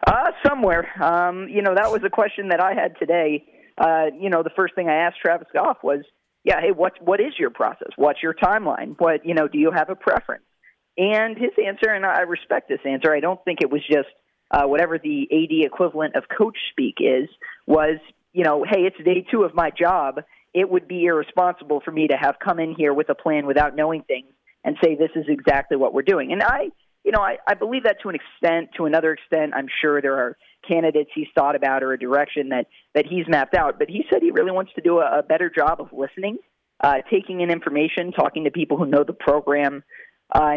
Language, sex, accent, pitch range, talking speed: English, male, American, 150-180 Hz, 230 wpm